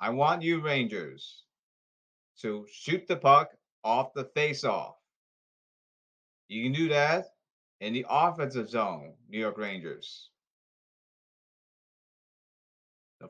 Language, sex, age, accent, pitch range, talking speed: English, male, 30-49, American, 120-175 Hz, 105 wpm